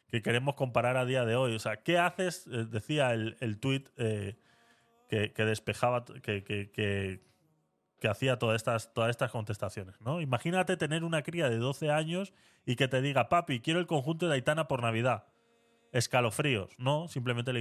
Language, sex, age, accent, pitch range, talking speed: Spanish, male, 20-39, Spanish, 115-145 Hz, 165 wpm